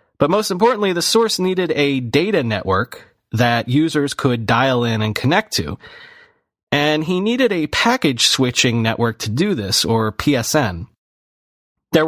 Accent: American